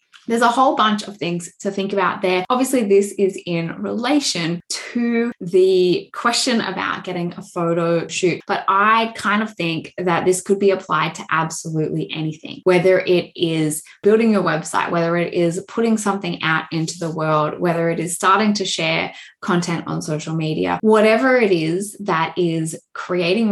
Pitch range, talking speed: 170-220 Hz, 170 wpm